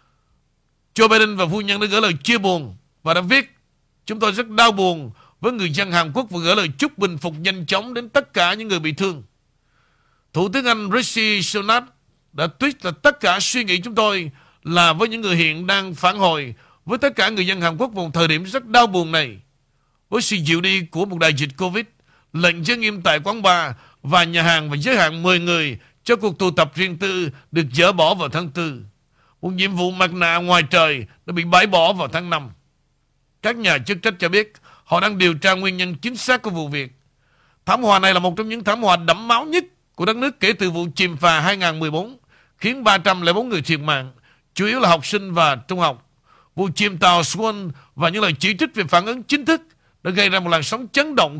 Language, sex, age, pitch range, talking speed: Vietnamese, male, 60-79, 155-210 Hz, 230 wpm